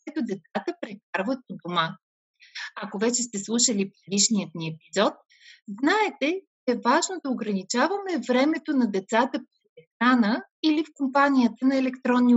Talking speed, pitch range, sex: 135 wpm, 215-305 Hz, female